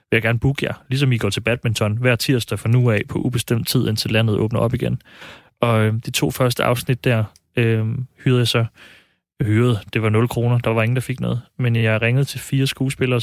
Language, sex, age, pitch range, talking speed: Danish, male, 30-49, 110-125 Hz, 235 wpm